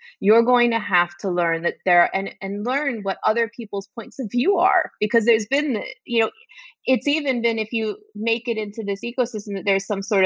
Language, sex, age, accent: English, female, 30-49, American